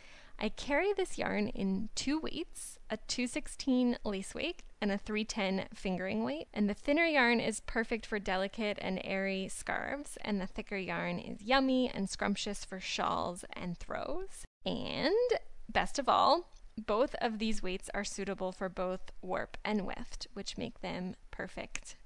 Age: 10-29